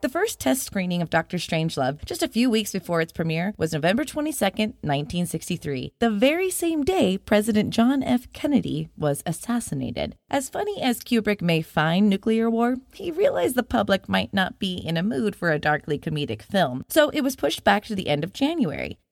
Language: English